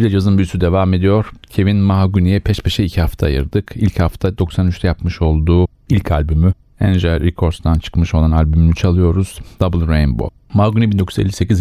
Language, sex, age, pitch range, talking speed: Turkish, male, 40-59, 85-100 Hz, 150 wpm